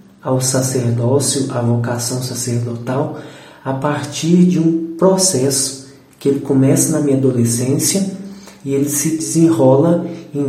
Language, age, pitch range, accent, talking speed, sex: Portuguese, 40-59, 130-160 Hz, Brazilian, 120 wpm, male